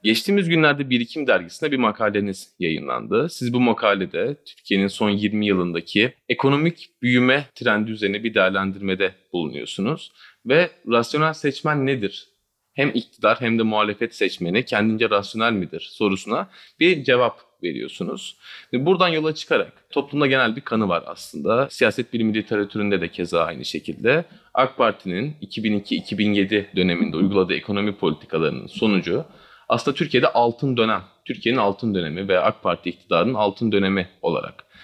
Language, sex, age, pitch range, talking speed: Turkish, male, 30-49, 100-130 Hz, 130 wpm